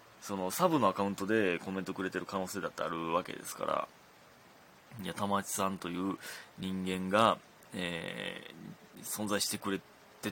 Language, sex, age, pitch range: Japanese, male, 20-39, 90-115 Hz